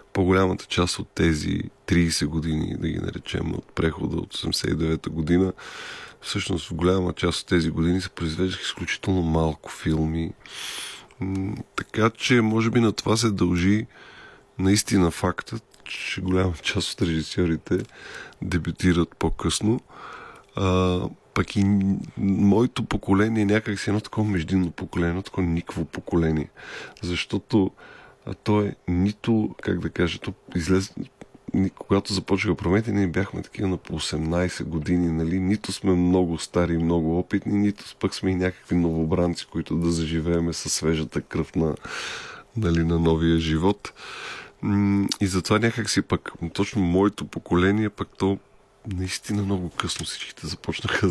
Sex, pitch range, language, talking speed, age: male, 85-100 Hz, Bulgarian, 135 wpm, 20-39